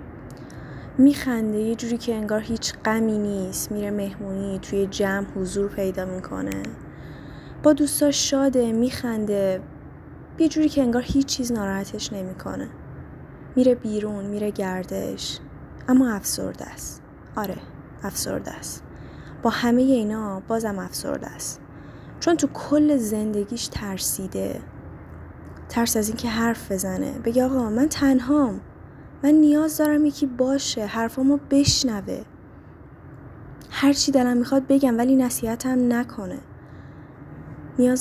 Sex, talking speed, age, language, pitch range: female, 115 wpm, 10-29, Persian, 195-260 Hz